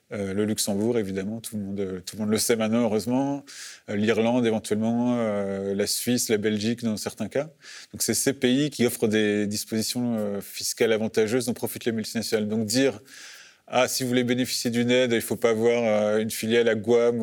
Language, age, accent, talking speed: French, 30-49, French, 210 wpm